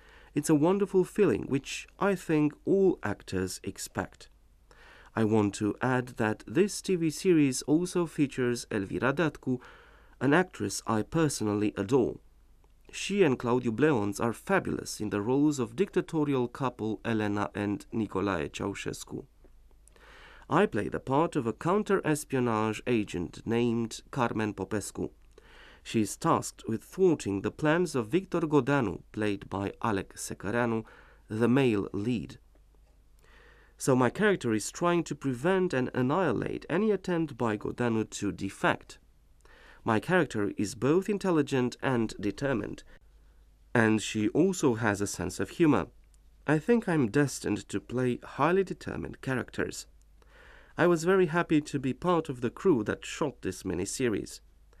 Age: 40-59